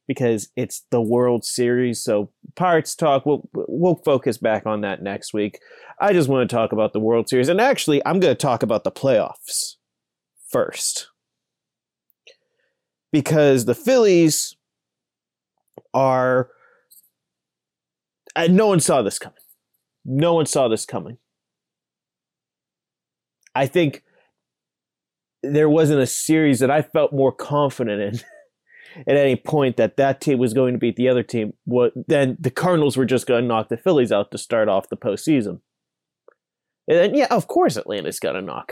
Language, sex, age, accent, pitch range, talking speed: English, male, 30-49, American, 120-165 Hz, 155 wpm